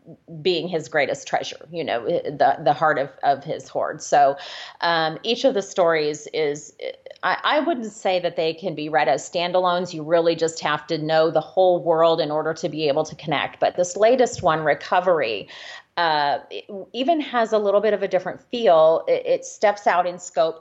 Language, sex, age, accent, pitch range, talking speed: English, female, 30-49, American, 160-205 Hz, 200 wpm